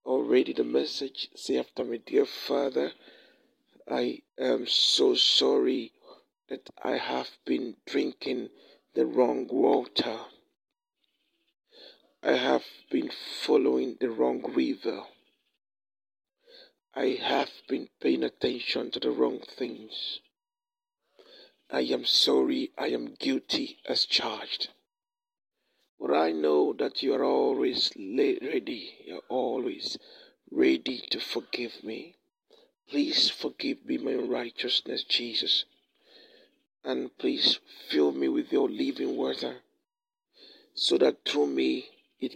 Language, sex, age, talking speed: English, male, 60-79, 110 wpm